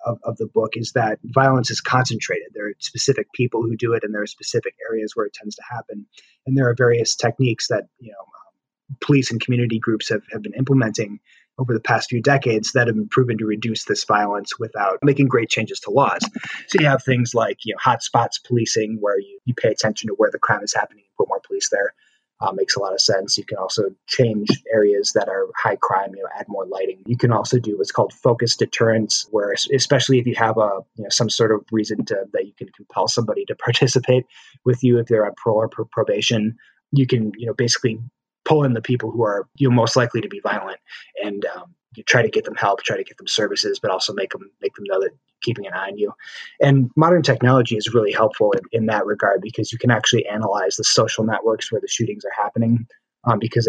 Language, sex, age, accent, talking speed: English, male, 30-49, American, 240 wpm